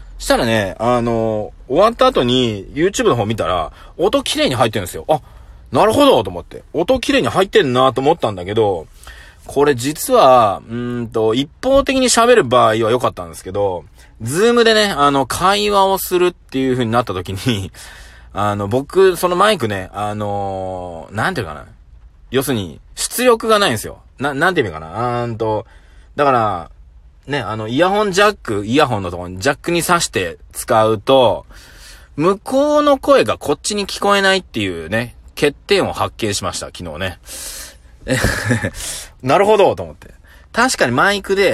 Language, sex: Japanese, male